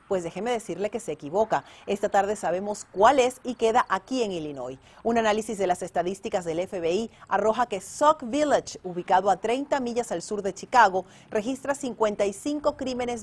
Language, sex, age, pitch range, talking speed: Spanish, female, 40-59, 175-230 Hz, 170 wpm